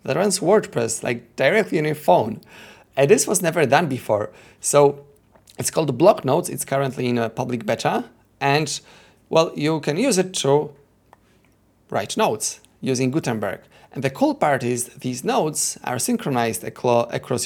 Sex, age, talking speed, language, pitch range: male, 30-49, 160 wpm, English, 120-150 Hz